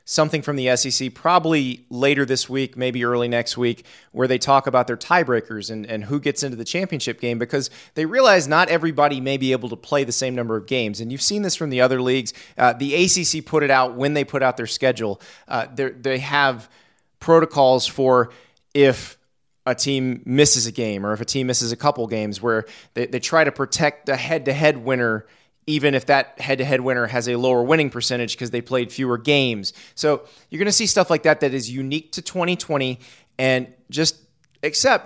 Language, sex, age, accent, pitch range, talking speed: English, male, 30-49, American, 125-150 Hz, 205 wpm